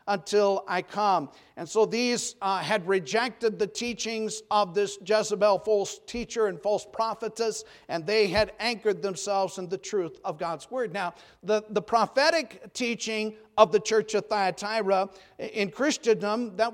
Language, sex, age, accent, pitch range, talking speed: English, male, 50-69, American, 180-215 Hz, 155 wpm